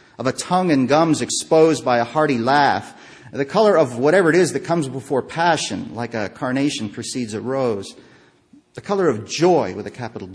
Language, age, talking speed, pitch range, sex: English, 40-59, 190 wpm, 110-150 Hz, male